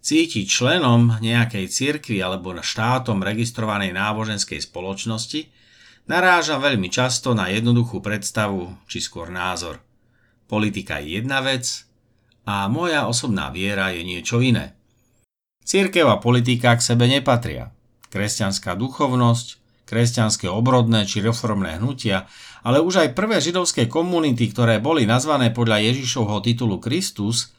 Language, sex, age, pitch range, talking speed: Slovak, male, 50-69, 110-140 Hz, 120 wpm